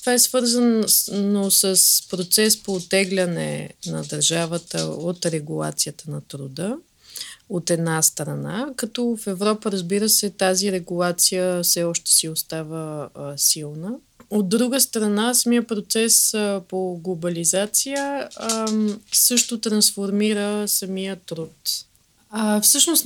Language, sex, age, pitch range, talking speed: Bulgarian, female, 20-39, 175-220 Hz, 115 wpm